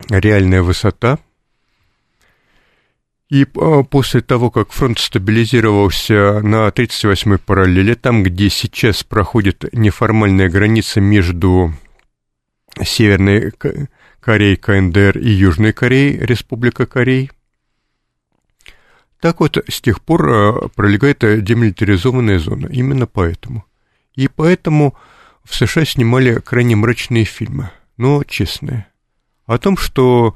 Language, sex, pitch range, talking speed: Russian, male, 100-125 Hz, 95 wpm